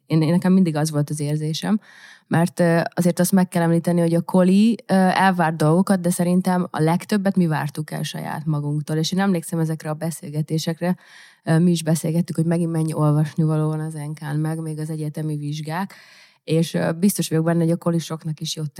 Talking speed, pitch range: 190 wpm, 155-175 Hz